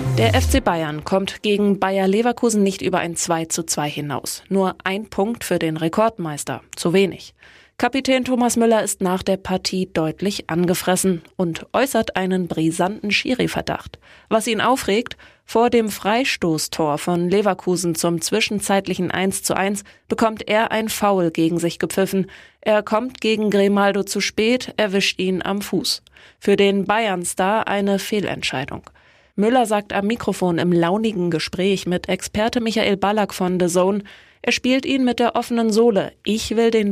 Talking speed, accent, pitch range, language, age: 155 wpm, German, 180-215 Hz, German, 20-39